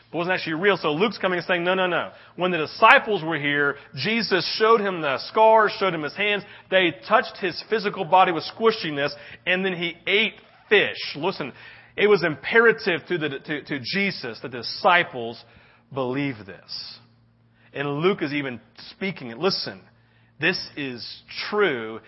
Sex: male